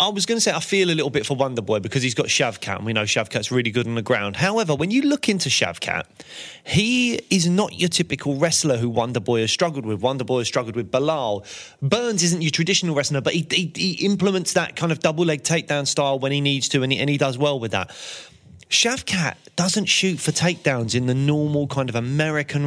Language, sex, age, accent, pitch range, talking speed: English, male, 30-49, British, 125-170 Hz, 230 wpm